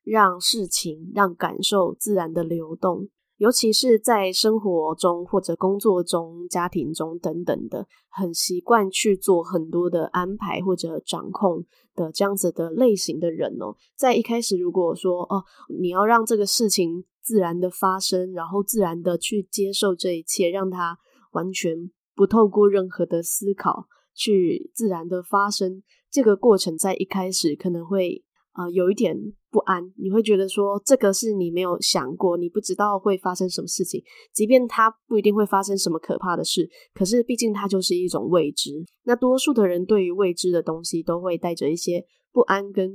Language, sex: Chinese, female